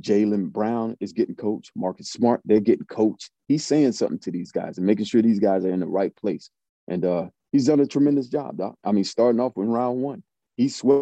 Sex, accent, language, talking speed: male, American, English, 235 wpm